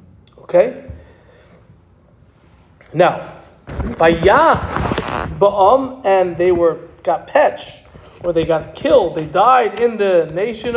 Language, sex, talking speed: English, male, 105 wpm